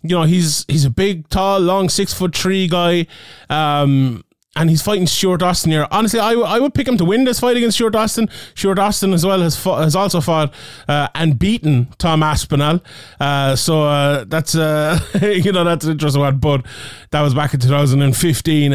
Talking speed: 205 wpm